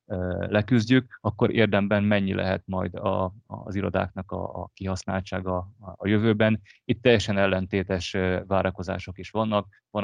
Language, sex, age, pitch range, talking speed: Hungarian, male, 30-49, 95-105 Hz, 125 wpm